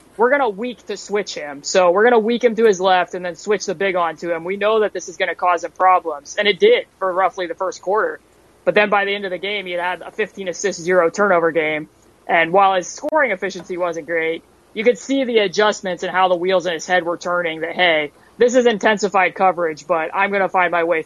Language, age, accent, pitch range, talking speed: English, 20-39, American, 170-195 Hz, 260 wpm